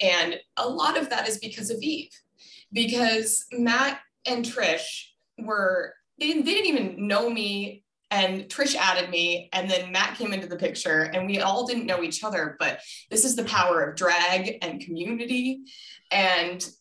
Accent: American